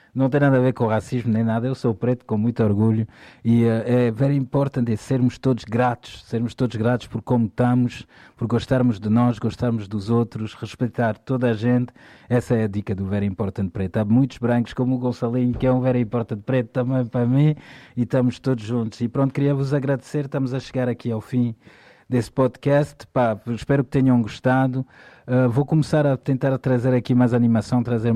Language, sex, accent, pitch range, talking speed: Portuguese, male, Portuguese, 115-130 Hz, 205 wpm